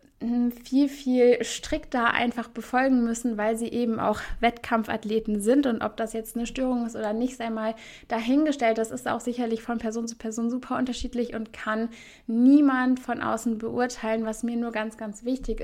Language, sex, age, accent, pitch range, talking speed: German, female, 20-39, German, 215-245 Hz, 175 wpm